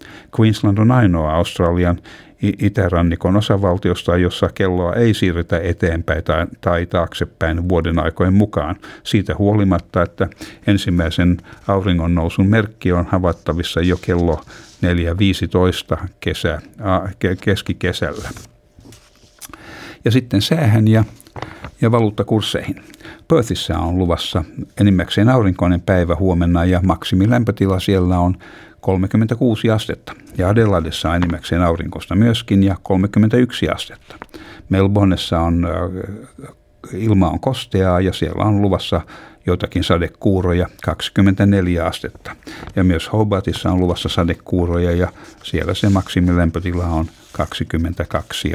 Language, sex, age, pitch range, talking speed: Finnish, male, 60-79, 85-100 Hz, 105 wpm